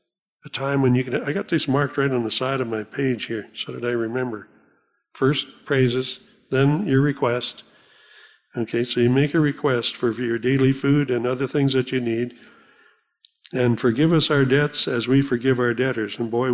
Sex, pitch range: male, 120-140 Hz